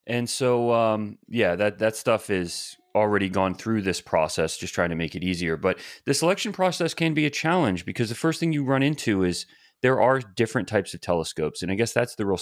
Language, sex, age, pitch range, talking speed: English, male, 30-49, 90-140 Hz, 225 wpm